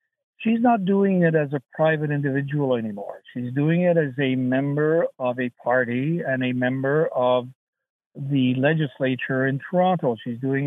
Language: English